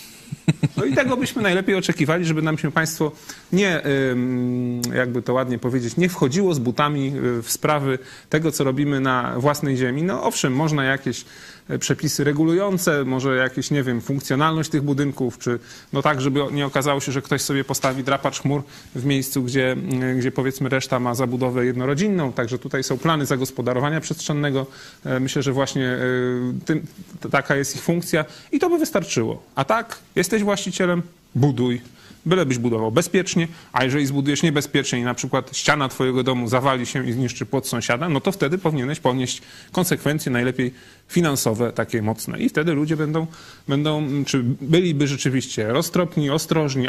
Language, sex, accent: Polish, male, native